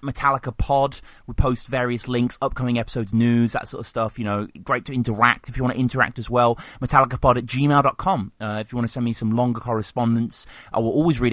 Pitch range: 110-135 Hz